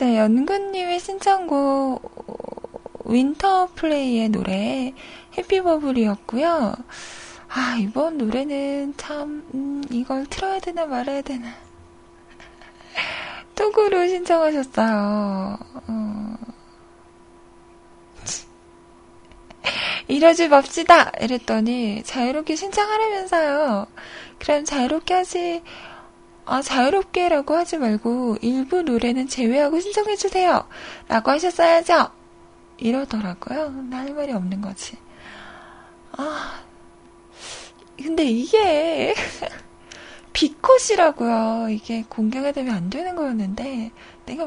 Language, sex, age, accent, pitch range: Korean, female, 20-39, native, 230-335 Hz